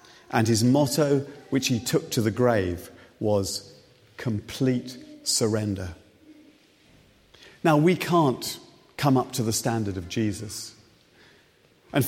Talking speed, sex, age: 115 wpm, male, 40-59